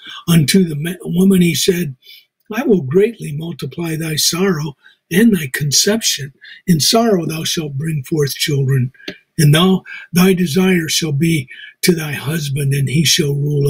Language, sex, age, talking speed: English, male, 60-79, 145 wpm